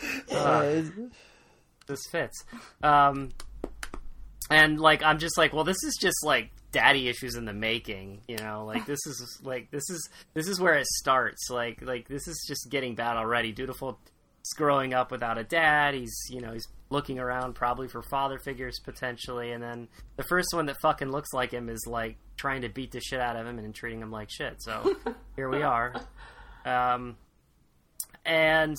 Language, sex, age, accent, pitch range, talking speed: English, male, 20-39, American, 125-155 Hz, 185 wpm